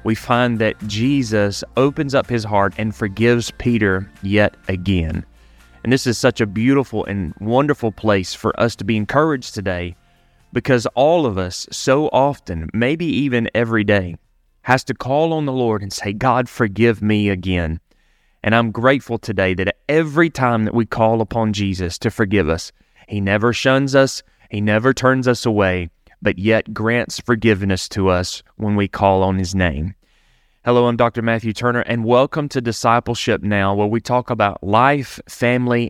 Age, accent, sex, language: 30-49, American, male, English